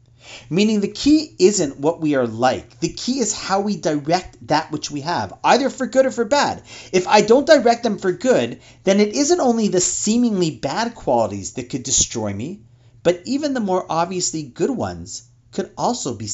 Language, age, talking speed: English, 40-59, 195 wpm